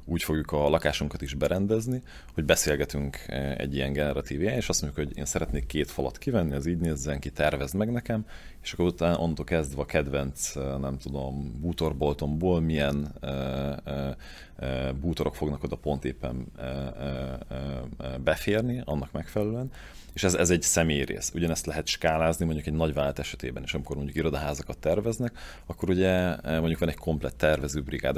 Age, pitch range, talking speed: 30-49, 70-80 Hz, 155 wpm